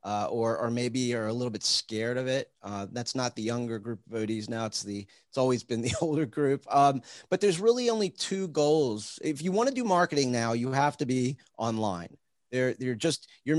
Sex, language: male, English